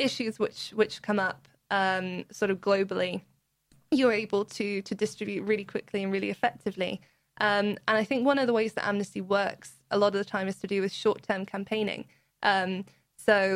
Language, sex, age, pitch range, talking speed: English, female, 20-39, 190-205 Hz, 190 wpm